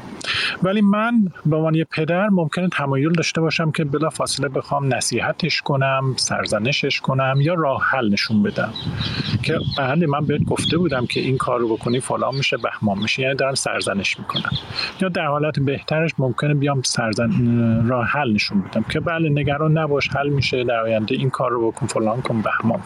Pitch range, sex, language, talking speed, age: 120-160 Hz, male, English, 175 wpm, 40-59